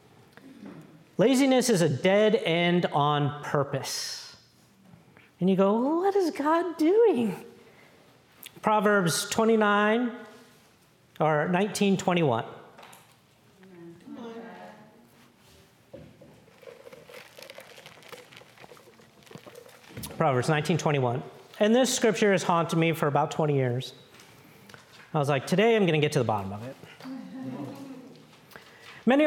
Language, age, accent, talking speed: English, 50-69, American, 90 wpm